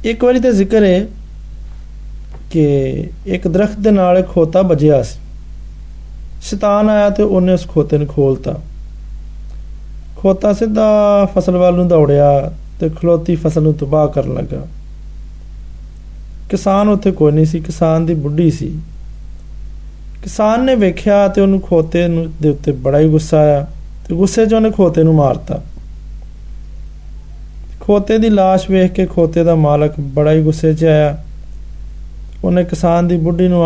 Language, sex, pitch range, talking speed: Hindi, male, 145-185 Hz, 105 wpm